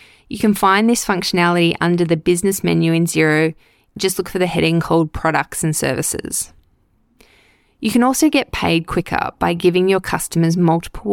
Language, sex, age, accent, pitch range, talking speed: English, female, 20-39, Australian, 165-200 Hz, 165 wpm